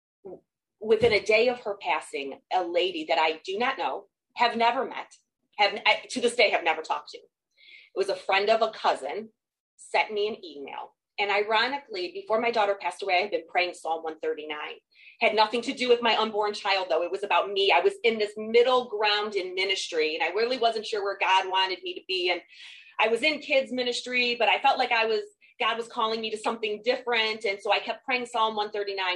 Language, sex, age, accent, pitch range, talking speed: English, female, 30-49, American, 180-240 Hz, 220 wpm